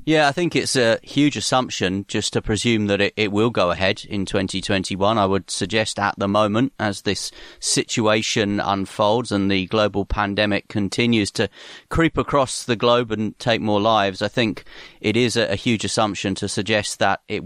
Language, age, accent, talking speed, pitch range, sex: English, 30-49, British, 185 wpm, 95-115 Hz, male